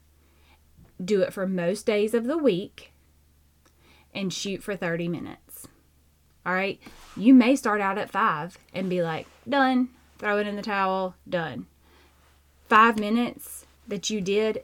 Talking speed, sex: 150 wpm, female